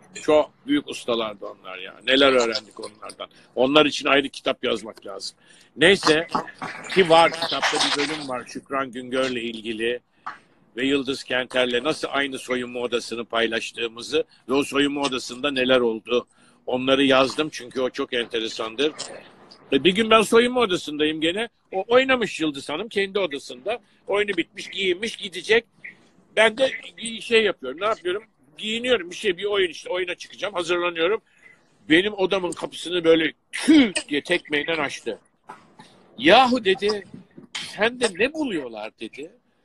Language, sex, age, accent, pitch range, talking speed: Turkish, male, 60-79, native, 140-240 Hz, 135 wpm